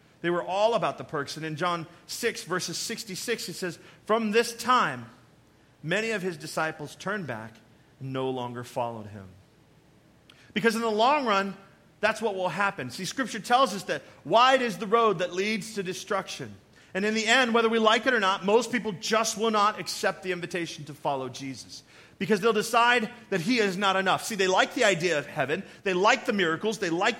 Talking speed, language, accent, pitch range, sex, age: 205 wpm, English, American, 170-220 Hz, male, 40-59